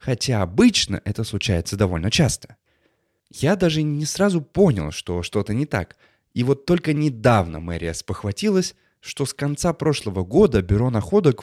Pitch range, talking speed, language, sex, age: 100-150 Hz, 145 wpm, Russian, male, 20-39